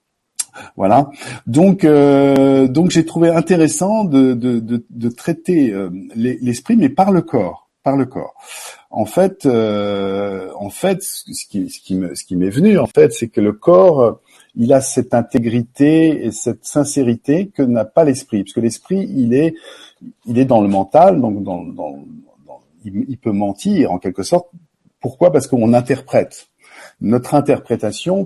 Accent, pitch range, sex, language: French, 110-170 Hz, male, French